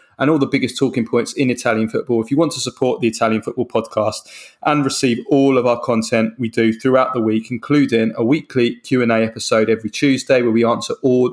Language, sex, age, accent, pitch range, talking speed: English, male, 20-39, British, 110-130 Hz, 210 wpm